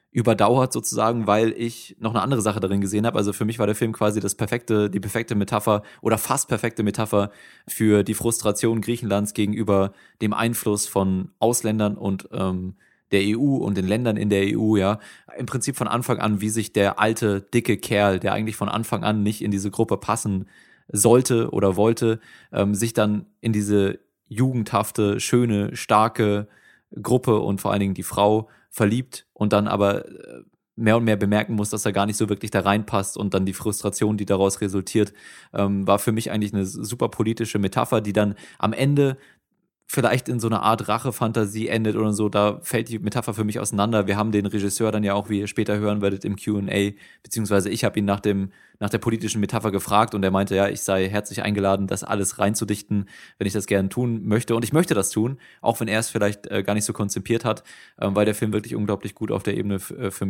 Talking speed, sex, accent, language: 200 wpm, male, German, German